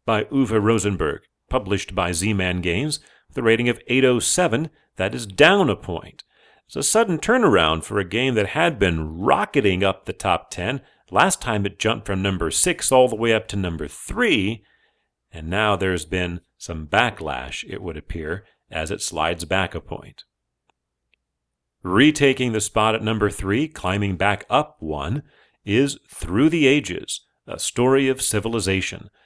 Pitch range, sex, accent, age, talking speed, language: 90-130 Hz, male, American, 40-59, 160 wpm, English